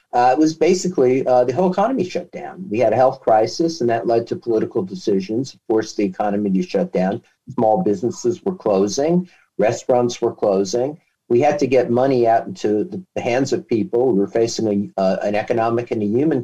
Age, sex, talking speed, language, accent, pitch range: 50-69, male, 200 wpm, English, American, 115-145 Hz